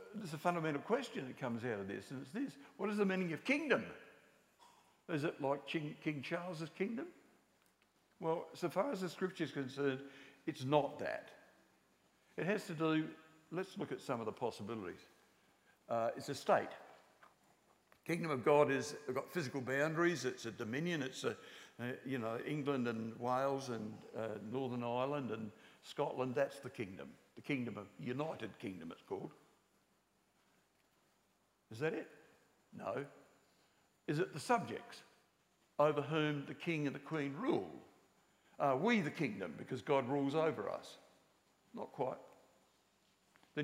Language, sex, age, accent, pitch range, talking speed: English, male, 60-79, British, 125-160 Hz, 155 wpm